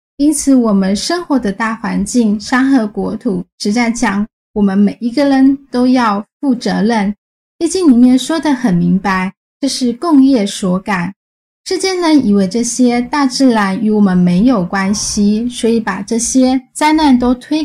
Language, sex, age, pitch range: Chinese, female, 10-29, 200-260 Hz